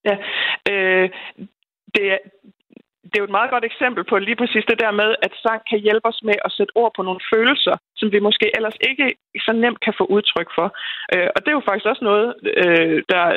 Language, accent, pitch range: Danish, native, 185-230 Hz